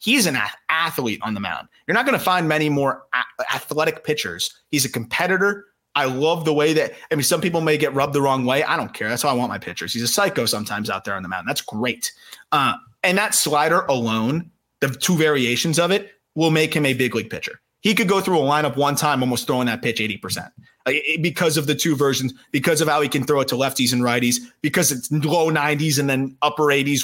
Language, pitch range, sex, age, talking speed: English, 120-150 Hz, male, 30-49, 240 wpm